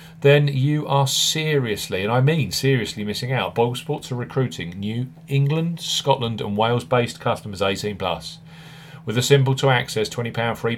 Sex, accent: male, British